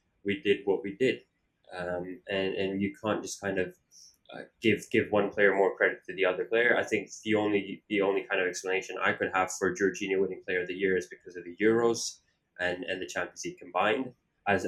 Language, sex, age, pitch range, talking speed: English, male, 20-39, 90-110 Hz, 225 wpm